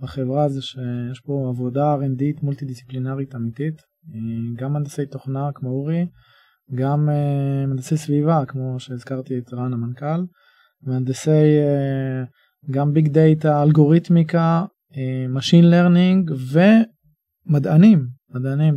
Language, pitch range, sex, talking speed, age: Hebrew, 135-155 Hz, male, 110 wpm, 20-39